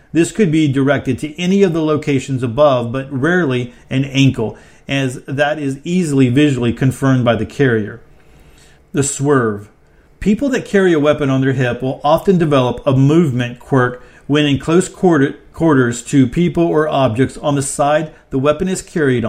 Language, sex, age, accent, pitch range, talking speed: English, male, 40-59, American, 130-155 Hz, 170 wpm